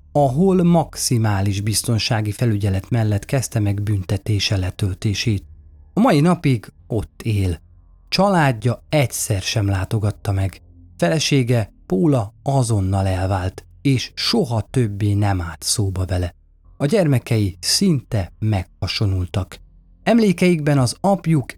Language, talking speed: Hungarian, 105 wpm